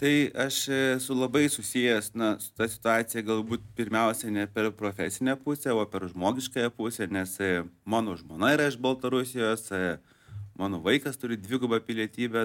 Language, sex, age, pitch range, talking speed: English, male, 30-49, 100-125 Hz, 145 wpm